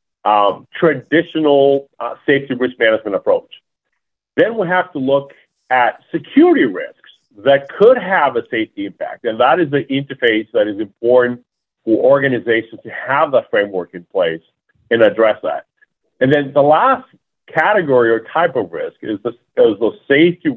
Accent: American